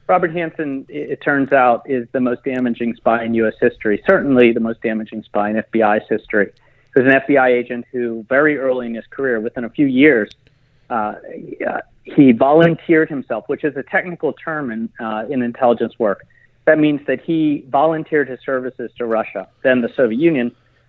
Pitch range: 120-145 Hz